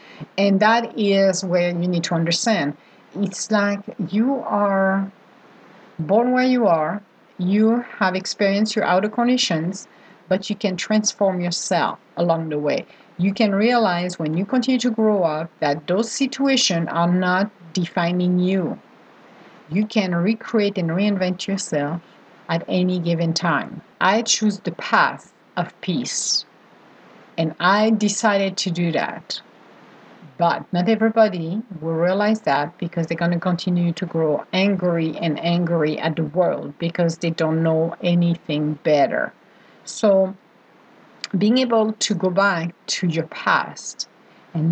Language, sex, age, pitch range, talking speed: English, female, 50-69, 170-205 Hz, 140 wpm